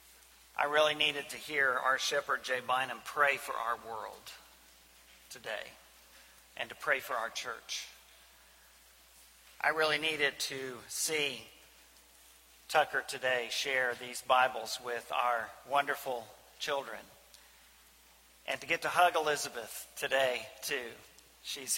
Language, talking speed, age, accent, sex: English, 120 wpm, 40-59, American, male